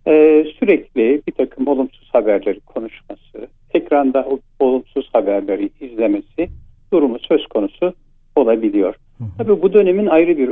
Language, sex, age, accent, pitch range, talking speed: Turkish, male, 60-79, native, 125-180 Hz, 115 wpm